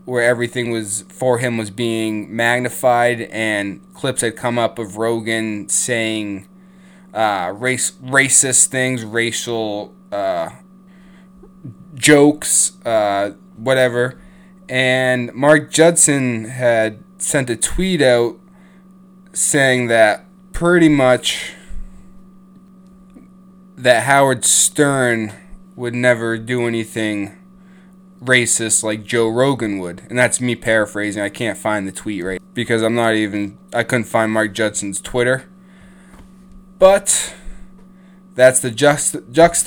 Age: 20-39